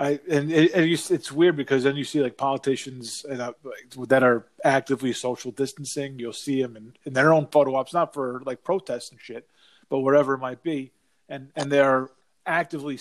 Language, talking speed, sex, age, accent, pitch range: English, 200 wpm, male, 30-49, American, 125-160 Hz